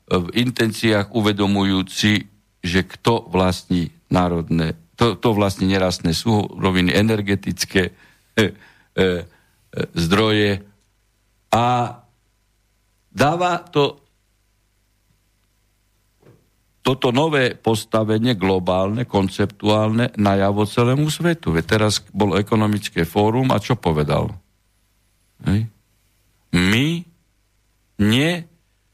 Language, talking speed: Slovak, 75 wpm